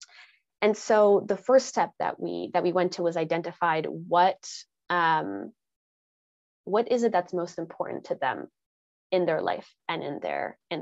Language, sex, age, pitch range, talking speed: English, female, 20-39, 170-195 Hz, 165 wpm